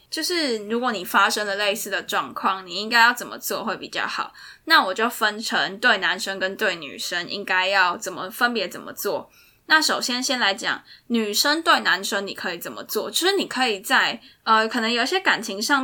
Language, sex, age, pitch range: Chinese, female, 10-29, 205-265 Hz